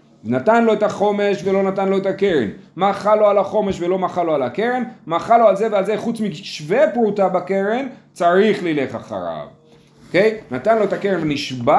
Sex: male